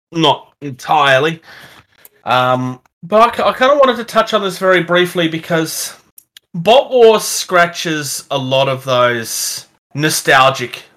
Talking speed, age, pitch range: 130 wpm, 30-49, 120-160 Hz